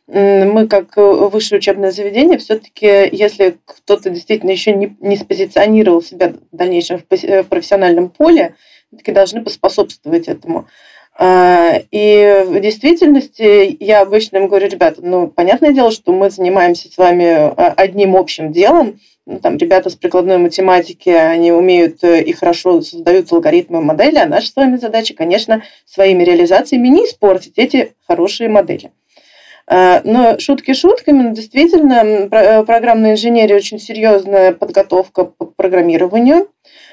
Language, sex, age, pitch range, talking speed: Russian, female, 20-39, 185-250 Hz, 125 wpm